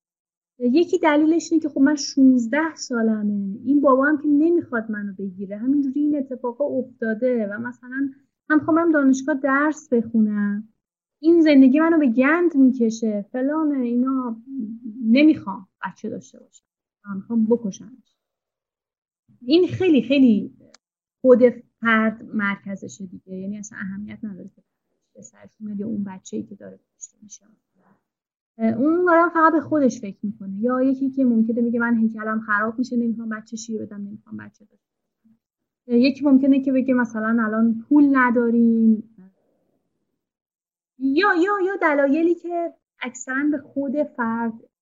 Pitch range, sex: 210-280 Hz, female